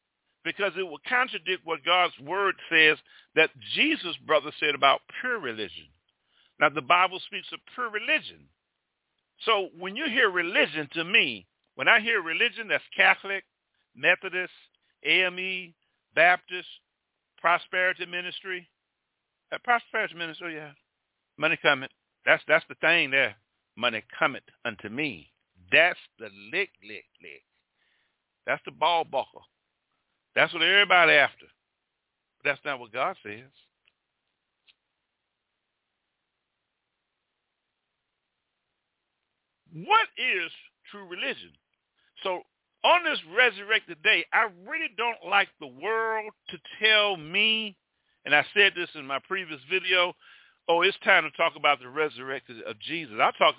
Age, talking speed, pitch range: 50-69, 125 wpm, 155-215 Hz